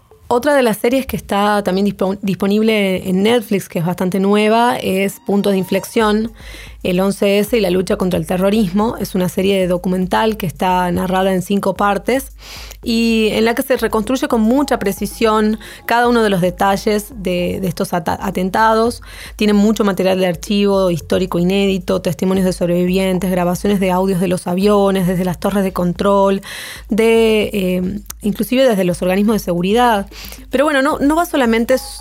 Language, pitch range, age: Spanish, 185-220 Hz, 20-39